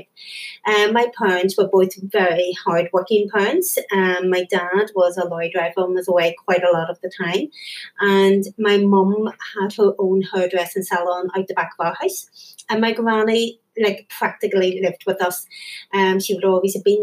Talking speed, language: 185 wpm, English